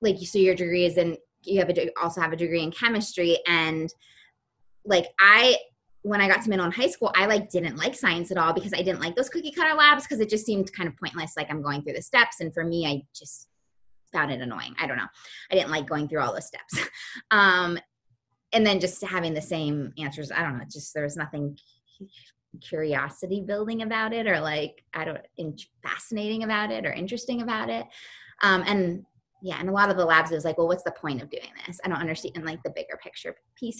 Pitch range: 160-210 Hz